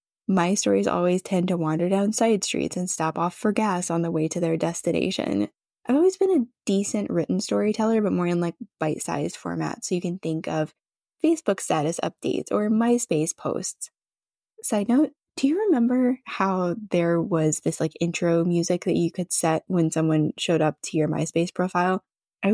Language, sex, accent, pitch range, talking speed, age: English, female, American, 155-200 Hz, 185 wpm, 10-29